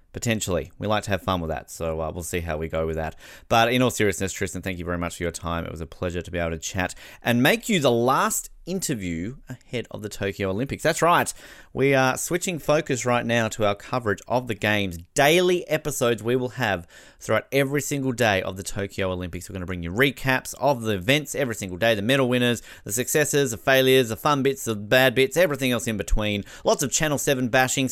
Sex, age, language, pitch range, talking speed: male, 30-49, English, 95-135 Hz, 235 wpm